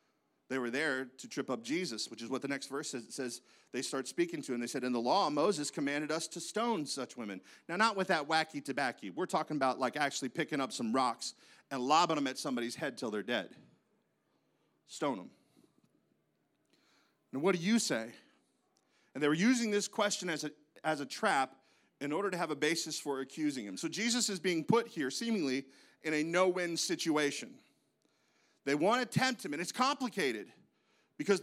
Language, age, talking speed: English, 40-59, 200 wpm